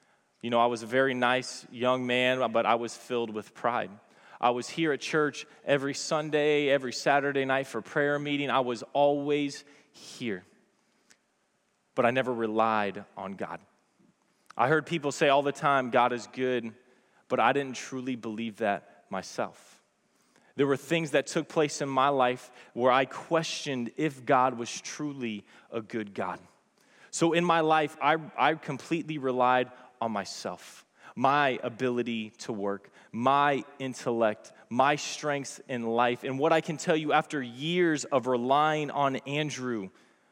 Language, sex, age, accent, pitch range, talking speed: English, male, 20-39, American, 120-145 Hz, 160 wpm